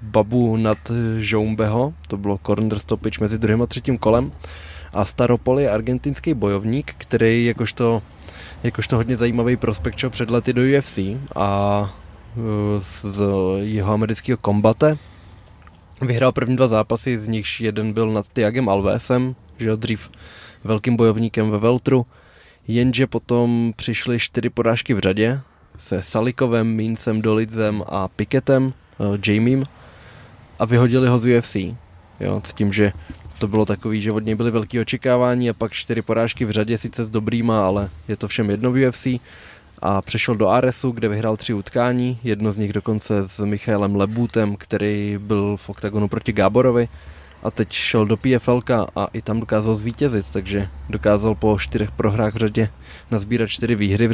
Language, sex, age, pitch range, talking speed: Czech, male, 20-39, 100-120 Hz, 150 wpm